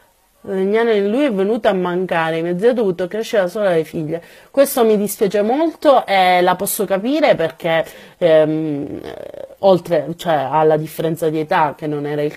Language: Italian